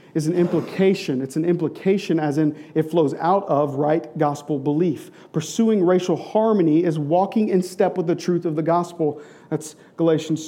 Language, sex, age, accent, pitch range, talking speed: English, male, 40-59, American, 155-195 Hz, 170 wpm